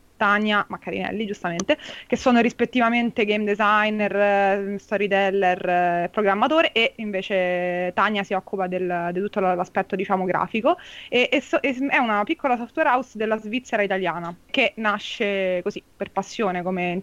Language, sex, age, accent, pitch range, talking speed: Italian, female, 20-39, native, 195-240 Hz, 140 wpm